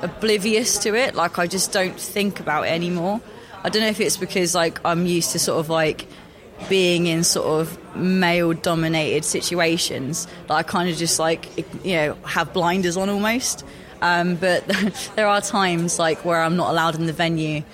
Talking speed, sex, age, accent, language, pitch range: 190 wpm, female, 20-39, British, English, 155-180 Hz